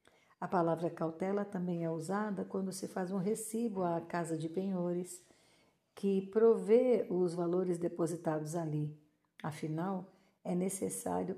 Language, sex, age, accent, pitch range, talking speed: Portuguese, female, 50-69, Brazilian, 165-205 Hz, 125 wpm